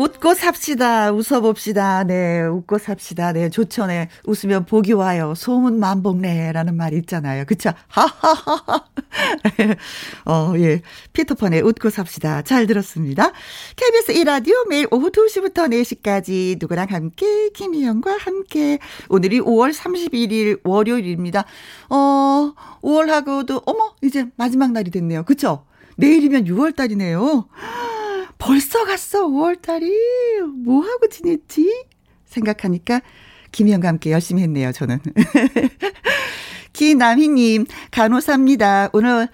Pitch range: 195-300 Hz